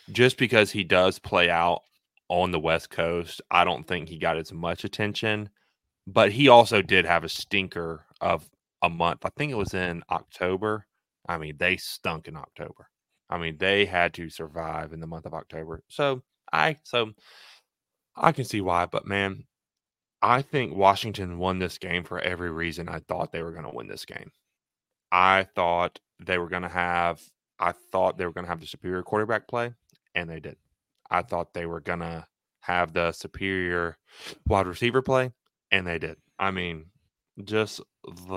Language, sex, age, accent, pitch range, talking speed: English, male, 20-39, American, 85-110 Hz, 180 wpm